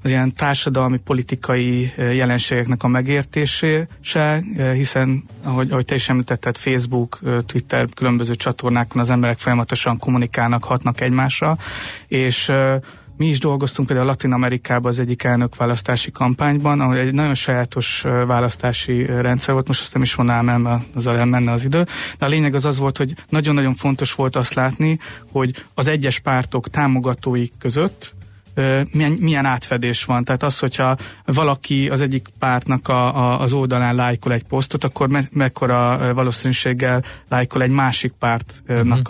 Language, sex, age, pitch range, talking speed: Hungarian, male, 30-49, 125-135 Hz, 145 wpm